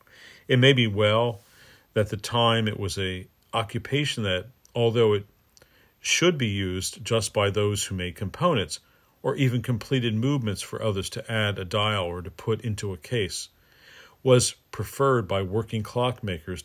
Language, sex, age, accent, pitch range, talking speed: English, male, 50-69, American, 100-120 Hz, 160 wpm